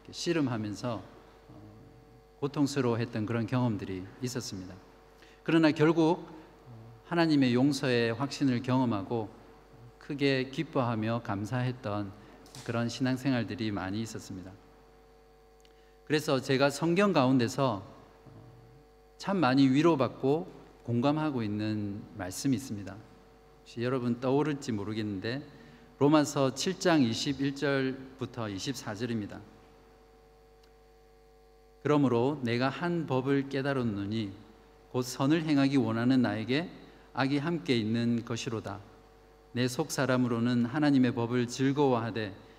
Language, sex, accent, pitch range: Korean, male, native, 115-145 Hz